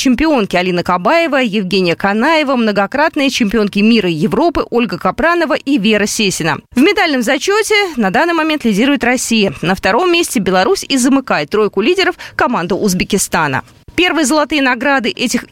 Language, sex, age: Russian, female, 20-39